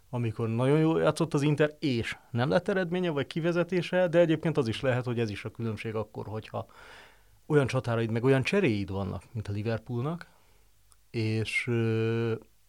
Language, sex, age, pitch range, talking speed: Hungarian, male, 40-59, 110-135 Hz, 160 wpm